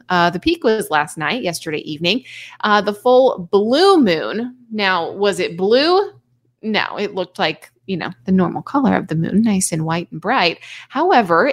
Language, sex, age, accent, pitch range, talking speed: English, female, 30-49, American, 170-230 Hz, 180 wpm